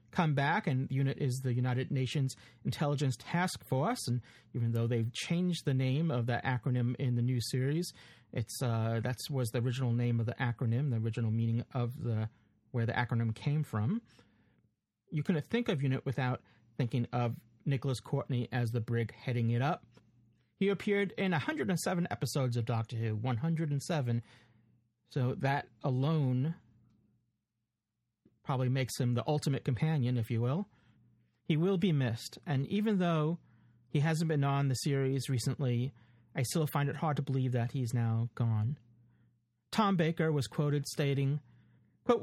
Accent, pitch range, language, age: American, 120-155 Hz, English, 40-59